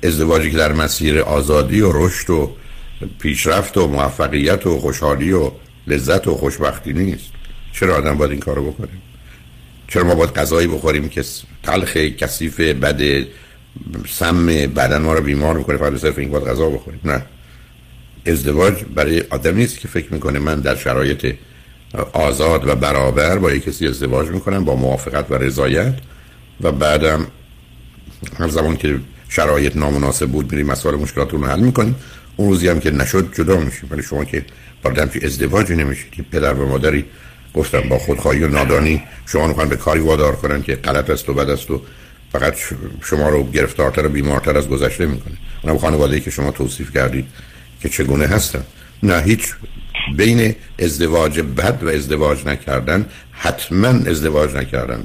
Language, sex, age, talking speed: Persian, male, 60-79, 160 wpm